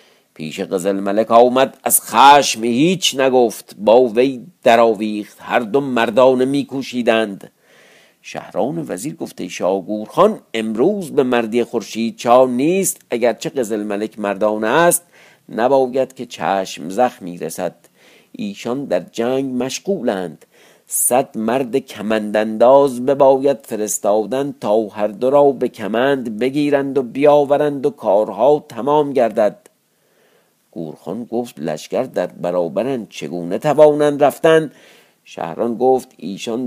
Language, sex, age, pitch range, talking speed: Persian, male, 50-69, 105-135 Hz, 110 wpm